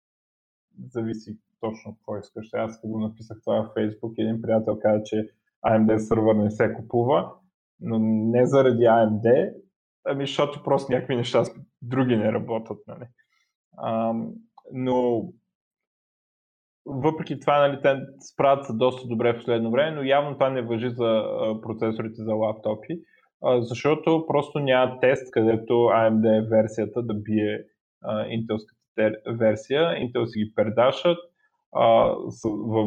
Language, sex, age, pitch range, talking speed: Bulgarian, male, 20-39, 110-135 Hz, 125 wpm